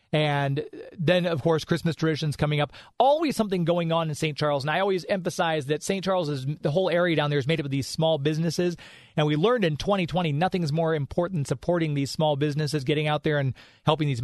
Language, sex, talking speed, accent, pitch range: English, male, 230 wpm, American, 145-175 Hz